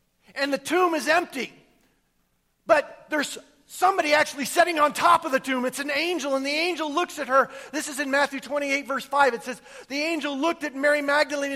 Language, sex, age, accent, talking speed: English, male, 40-59, American, 200 wpm